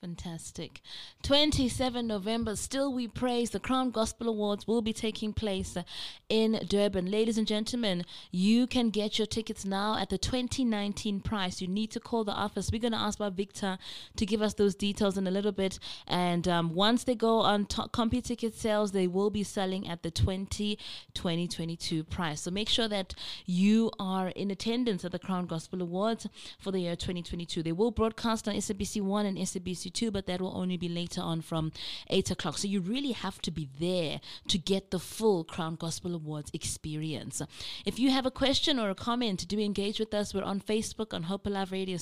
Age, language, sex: 20-39, English, female